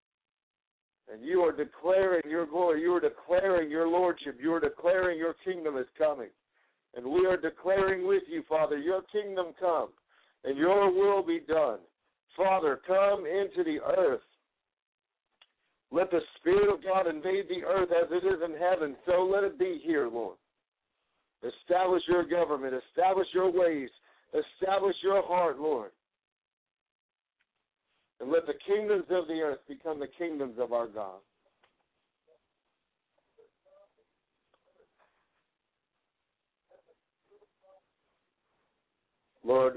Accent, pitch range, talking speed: American, 130-190 Hz, 120 wpm